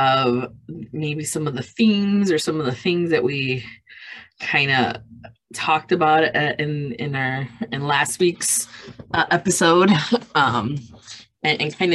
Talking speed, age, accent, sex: 150 wpm, 20-39, American, female